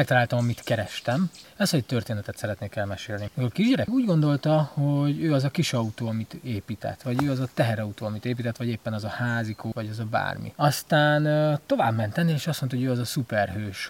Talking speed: 205 wpm